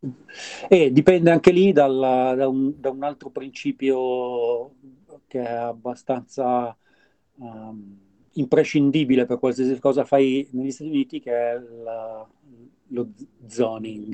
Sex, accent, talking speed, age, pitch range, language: male, native, 120 wpm, 40-59, 120-140 Hz, Italian